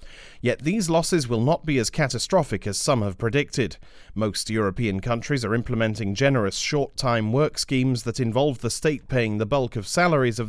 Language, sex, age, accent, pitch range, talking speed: English, male, 40-59, British, 110-140 Hz, 175 wpm